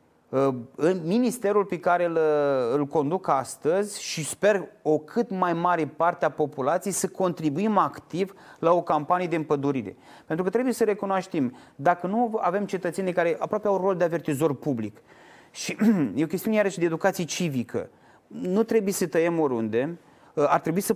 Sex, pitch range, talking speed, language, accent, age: male, 140-190 Hz, 160 wpm, Romanian, native, 30-49